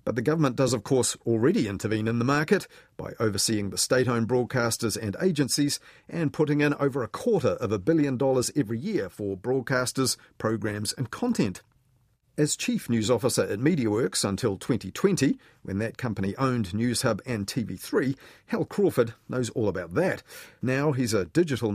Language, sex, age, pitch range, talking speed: English, male, 40-59, 110-145 Hz, 170 wpm